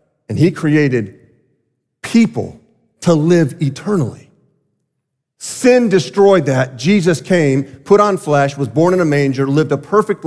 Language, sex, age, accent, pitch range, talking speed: English, male, 40-59, American, 125-175 Hz, 135 wpm